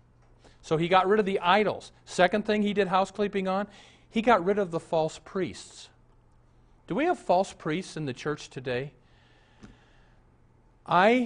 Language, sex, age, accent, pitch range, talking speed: English, male, 50-69, American, 125-190 Hz, 160 wpm